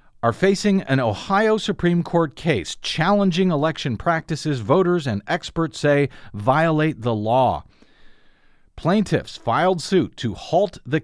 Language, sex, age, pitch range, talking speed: English, male, 40-59, 125-170 Hz, 125 wpm